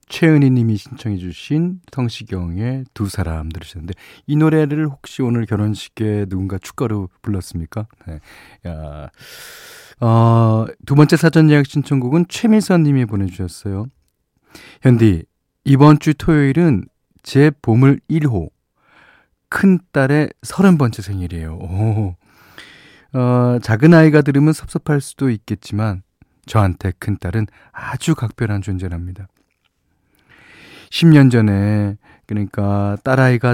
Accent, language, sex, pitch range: native, Korean, male, 100-135 Hz